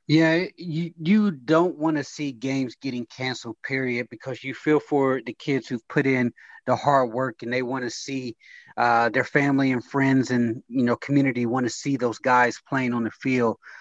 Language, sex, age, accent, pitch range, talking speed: English, male, 30-49, American, 130-155 Hz, 200 wpm